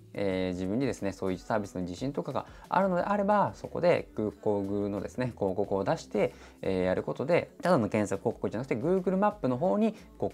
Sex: male